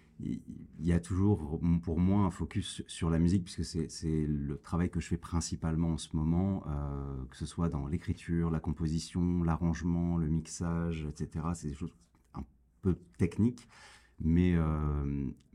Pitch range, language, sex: 75-95 Hz, French, male